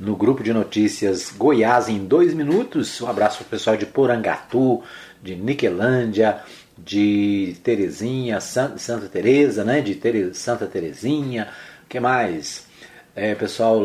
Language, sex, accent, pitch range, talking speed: Portuguese, male, Brazilian, 110-160 Hz, 140 wpm